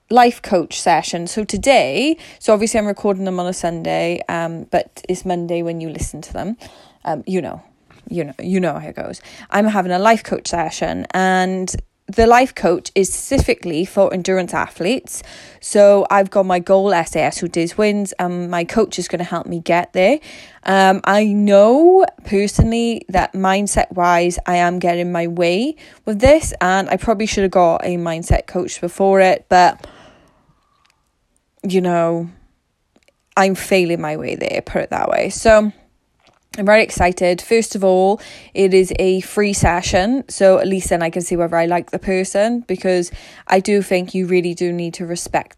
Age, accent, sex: 20-39, British, female